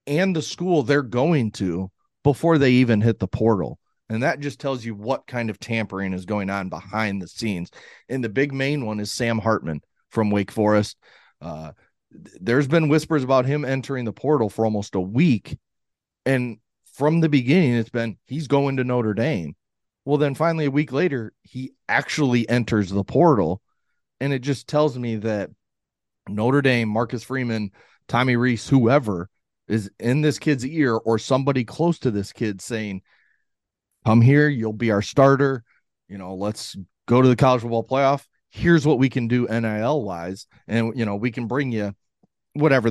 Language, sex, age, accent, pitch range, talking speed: English, male, 30-49, American, 105-135 Hz, 180 wpm